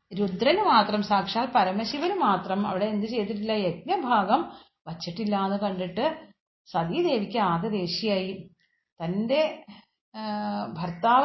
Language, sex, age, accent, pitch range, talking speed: Malayalam, female, 40-59, native, 195-250 Hz, 95 wpm